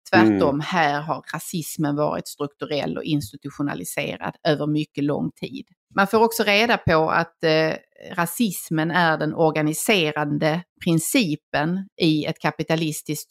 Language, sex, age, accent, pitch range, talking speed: English, female, 30-49, Swedish, 155-190 Hz, 115 wpm